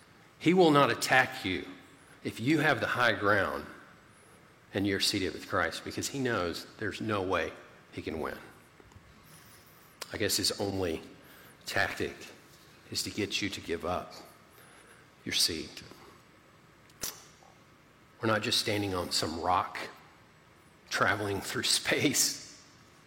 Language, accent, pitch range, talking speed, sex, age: English, American, 120-160 Hz, 125 wpm, male, 40-59